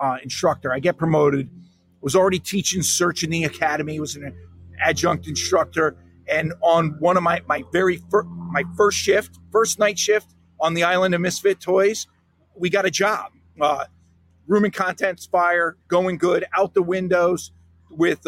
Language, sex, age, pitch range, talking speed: English, male, 40-59, 150-185 Hz, 165 wpm